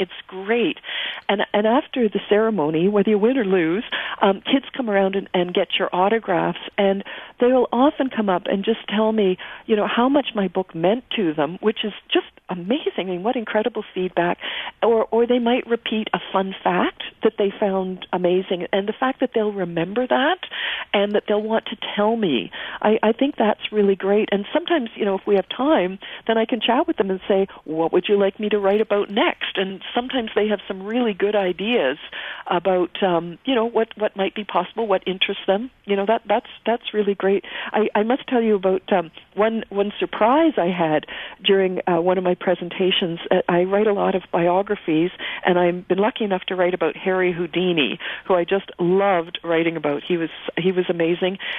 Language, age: English, 50-69